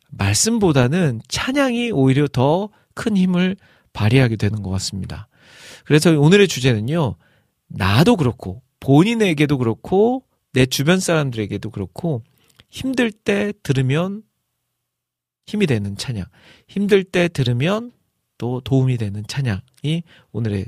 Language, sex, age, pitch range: Korean, male, 40-59, 115-170 Hz